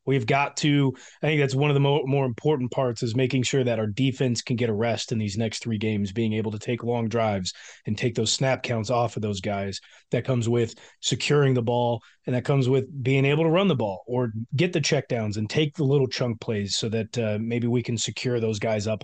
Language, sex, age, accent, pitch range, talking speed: English, male, 30-49, American, 115-140 Hz, 245 wpm